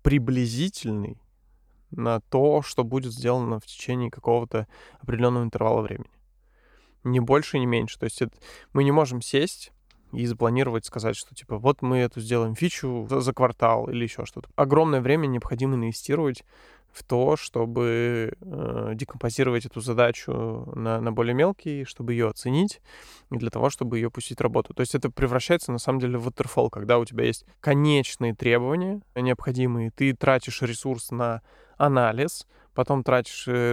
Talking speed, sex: 155 wpm, male